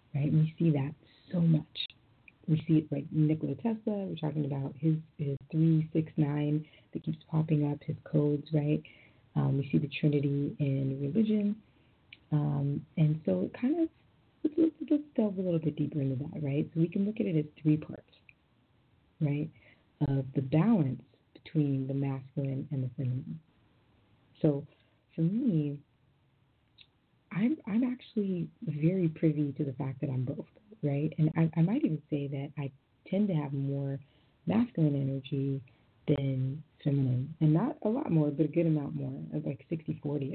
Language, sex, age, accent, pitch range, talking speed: English, female, 30-49, American, 140-165 Hz, 170 wpm